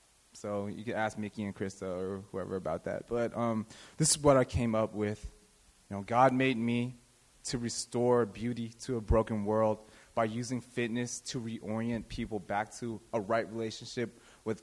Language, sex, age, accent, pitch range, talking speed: English, male, 20-39, American, 110-140 Hz, 180 wpm